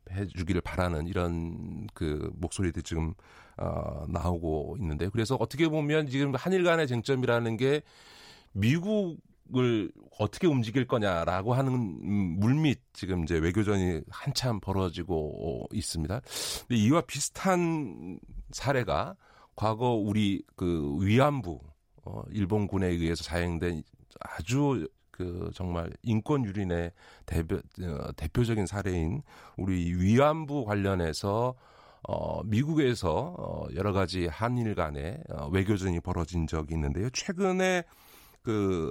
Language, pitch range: Korean, 85-125 Hz